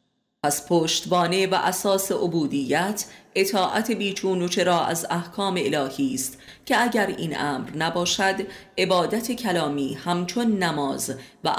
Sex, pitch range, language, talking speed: female, 155-200 Hz, Persian, 115 wpm